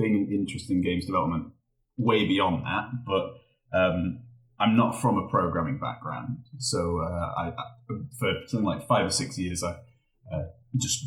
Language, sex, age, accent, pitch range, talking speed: English, male, 30-49, British, 95-120 Hz, 155 wpm